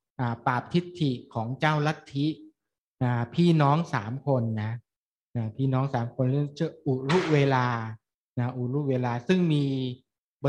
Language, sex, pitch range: Thai, male, 120-145 Hz